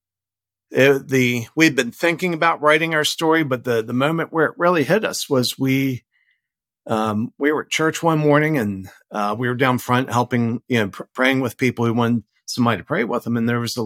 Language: English